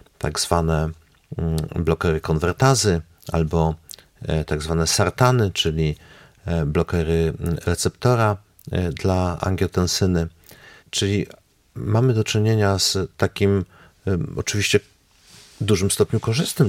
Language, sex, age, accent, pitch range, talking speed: Polish, male, 40-59, native, 90-120 Hz, 85 wpm